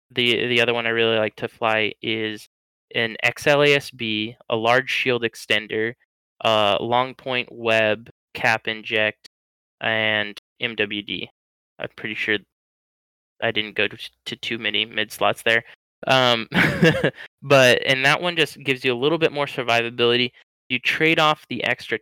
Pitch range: 110-130 Hz